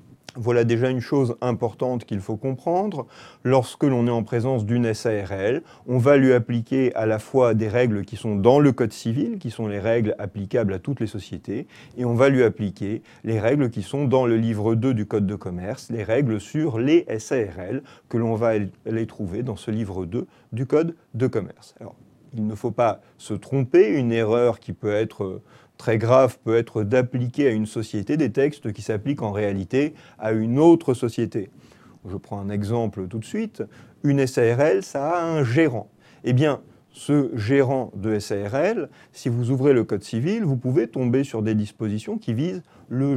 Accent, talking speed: French, 190 wpm